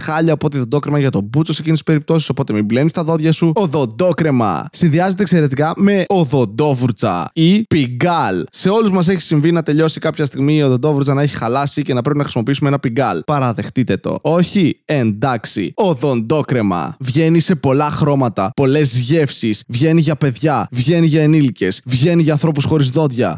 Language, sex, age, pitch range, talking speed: Greek, male, 20-39, 135-165 Hz, 170 wpm